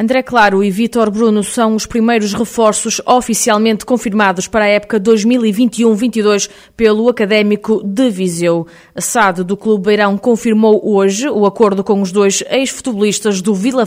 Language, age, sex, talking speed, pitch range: Portuguese, 20-39, female, 150 wpm, 195-225 Hz